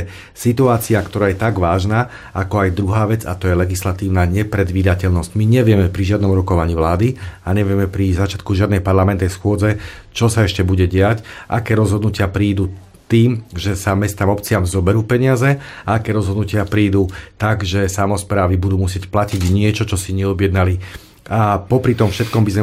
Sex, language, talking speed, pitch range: male, Slovak, 165 wpm, 95-110 Hz